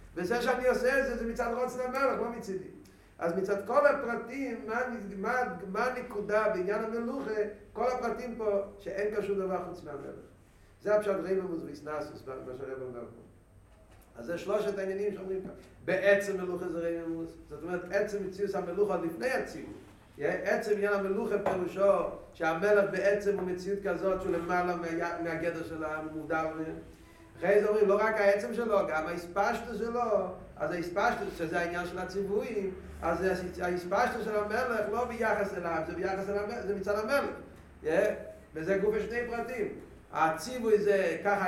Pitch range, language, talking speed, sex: 170-220 Hz, Hebrew, 150 wpm, male